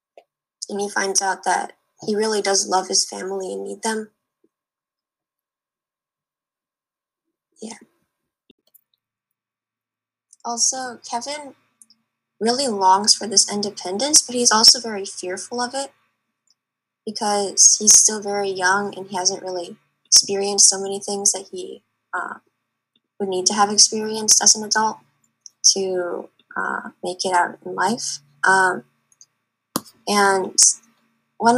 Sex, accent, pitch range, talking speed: female, American, 185-220 Hz, 120 wpm